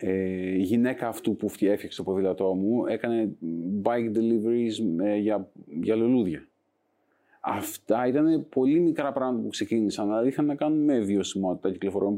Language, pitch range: Greek, 105-130 Hz